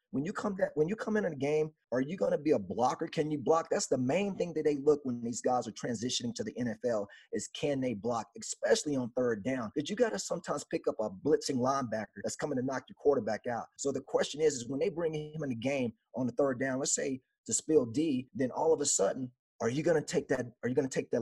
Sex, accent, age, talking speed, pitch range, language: male, American, 30-49, 260 wpm, 130-210 Hz, English